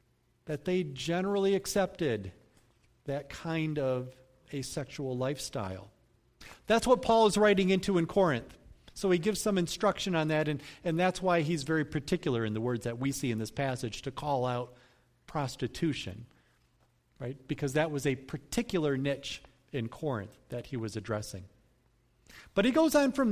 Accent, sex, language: American, male, English